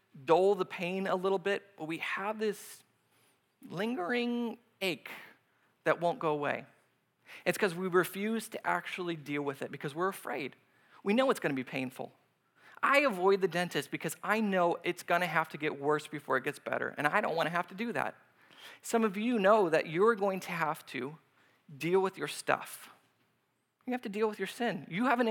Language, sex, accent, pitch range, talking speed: English, male, American, 155-215 Hz, 200 wpm